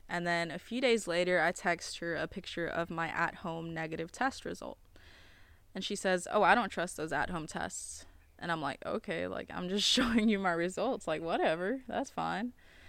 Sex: female